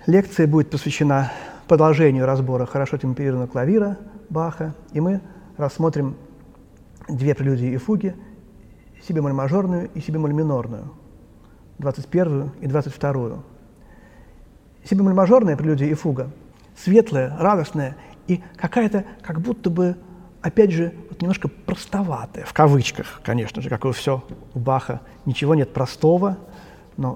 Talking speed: 110 wpm